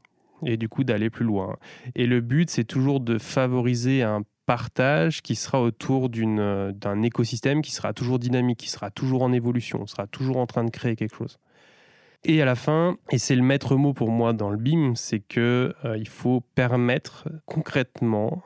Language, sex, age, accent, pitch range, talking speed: French, male, 20-39, French, 115-140 Hz, 195 wpm